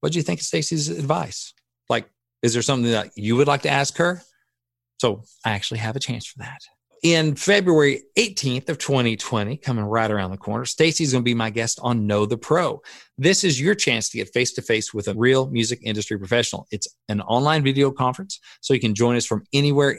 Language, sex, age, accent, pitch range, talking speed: English, male, 40-59, American, 110-145 Hz, 215 wpm